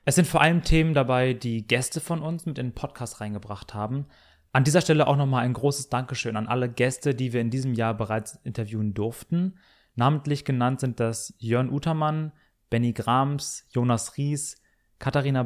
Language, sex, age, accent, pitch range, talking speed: German, male, 30-49, German, 115-140 Hz, 180 wpm